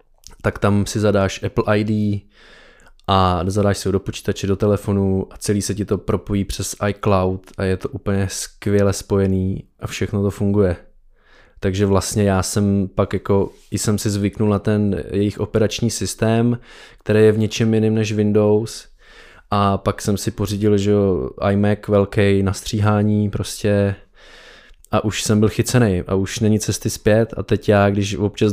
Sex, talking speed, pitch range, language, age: male, 165 wpm, 100-110 Hz, Czech, 20-39